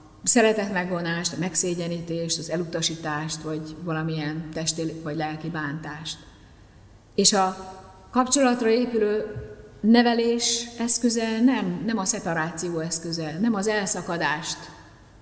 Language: Hungarian